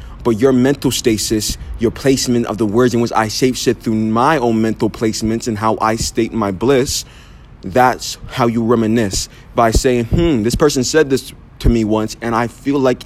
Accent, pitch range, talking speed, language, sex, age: American, 110-130 Hz, 200 wpm, English, male, 20-39